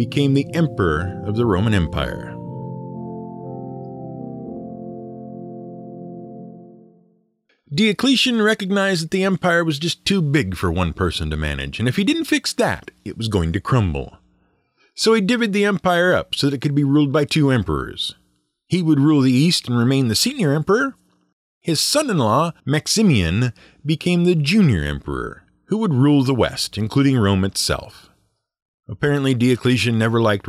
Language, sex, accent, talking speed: English, male, American, 150 wpm